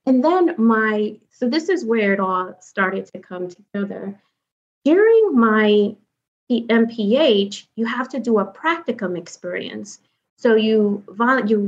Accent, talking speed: American, 135 wpm